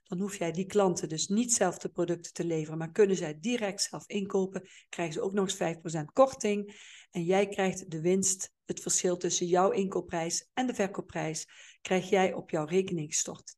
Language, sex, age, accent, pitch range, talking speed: Dutch, female, 40-59, Dutch, 175-225 Hz, 190 wpm